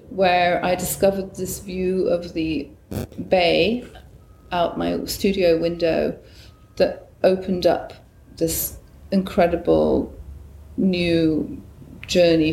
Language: English